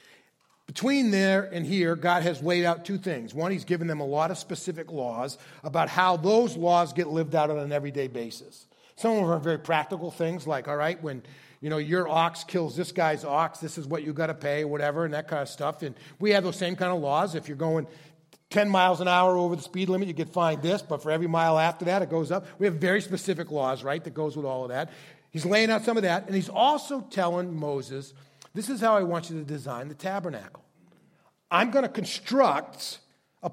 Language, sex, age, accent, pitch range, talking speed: English, male, 40-59, American, 155-190 Hz, 235 wpm